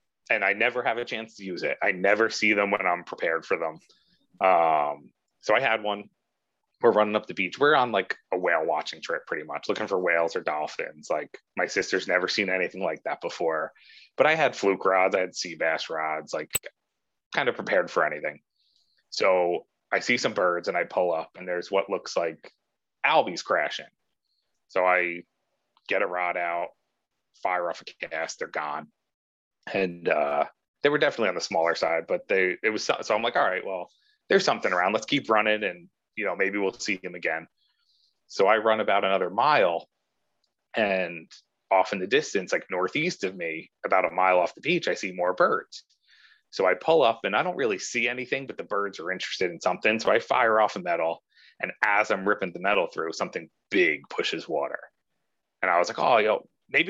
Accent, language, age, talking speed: American, English, 30-49, 205 wpm